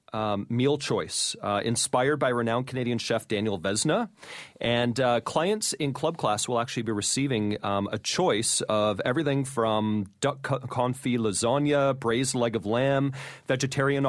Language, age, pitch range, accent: English, 30-49, 105-135 Hz, American